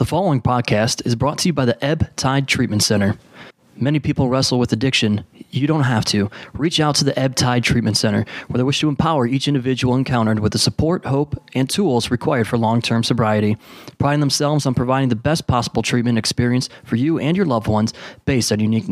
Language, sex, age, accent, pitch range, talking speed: English, male, 20-39, American, 120-150 Hz, 210 wpm